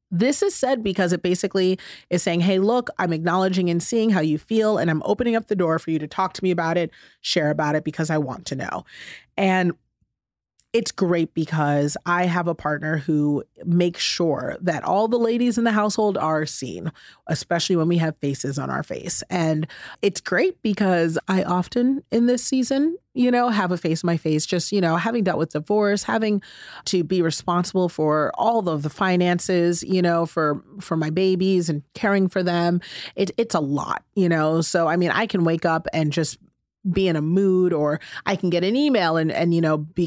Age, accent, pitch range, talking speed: 30-49, American, 160-195 Hz, 205 wpm